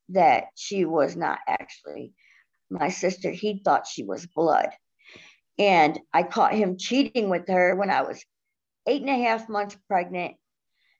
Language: English